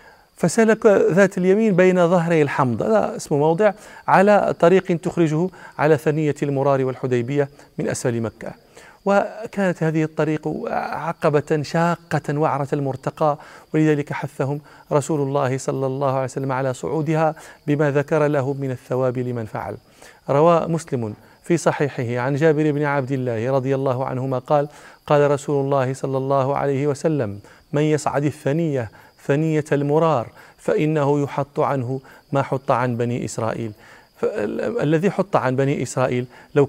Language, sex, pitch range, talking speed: Arabic, male, 135-160 Hz, 135 wpm